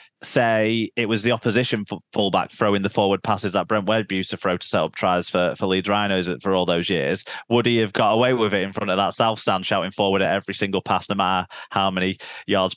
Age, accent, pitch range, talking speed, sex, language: 30-49, British, 95-110 Hz, 240 wpm, male, English